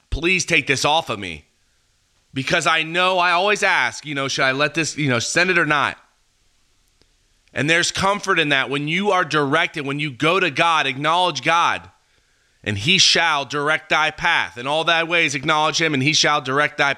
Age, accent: 30-49, American